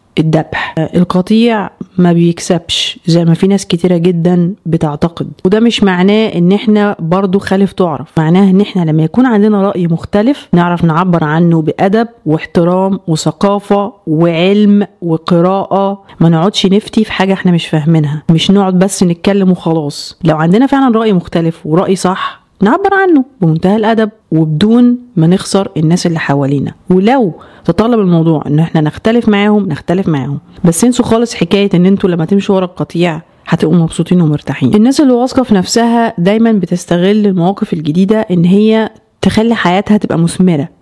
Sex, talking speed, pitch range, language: female, 150 wpm, 165-210 Hz, Arabic